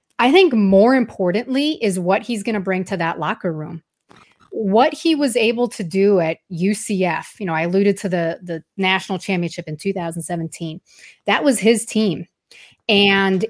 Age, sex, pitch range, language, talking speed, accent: 30-49, female, 185-245 Hz, English, 170 wpm, American